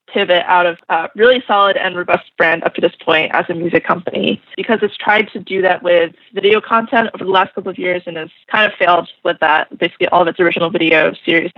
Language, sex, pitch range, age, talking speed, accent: English, female, 175-210 Hz, 20-39, 240 wpm, American